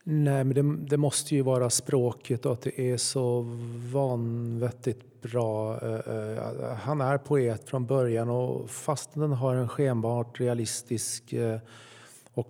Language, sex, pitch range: Swedish, male, 120-145 Hz